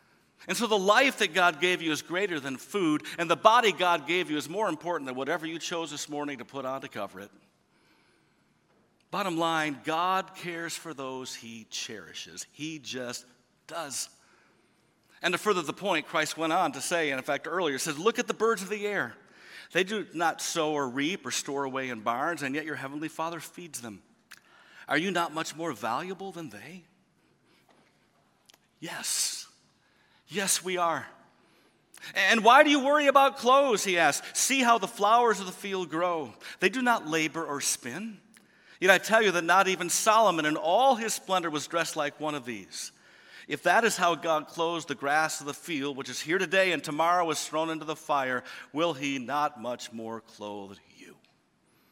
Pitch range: 140-185 Hz